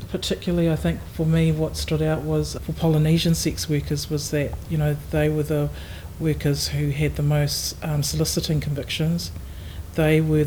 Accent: Australian